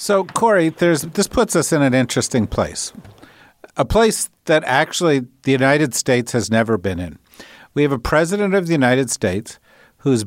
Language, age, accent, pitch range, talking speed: English, 50-69, American, 110-145 Hz, 170 wpm